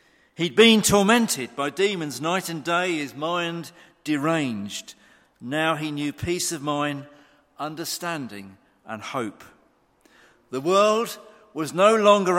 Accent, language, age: British, English, 50-69